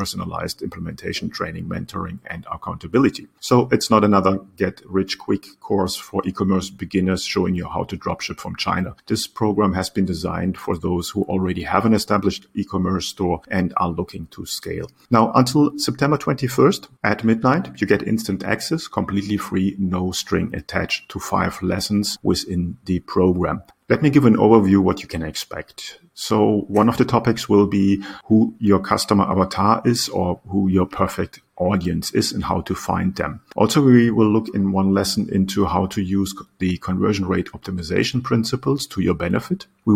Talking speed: 175 wpm